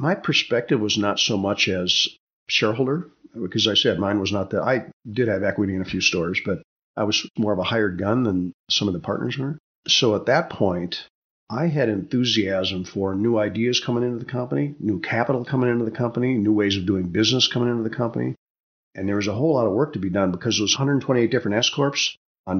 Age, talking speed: 50-69, 225 wpm